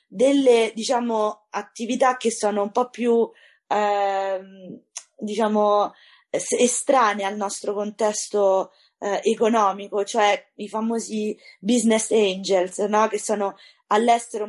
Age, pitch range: 20-39, 205-245 Hz